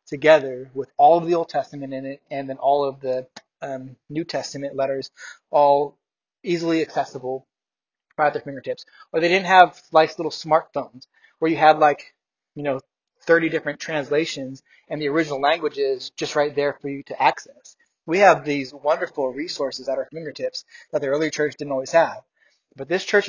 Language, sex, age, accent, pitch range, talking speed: English, male, 20-39, American, 140-165 Hz, 185 wpm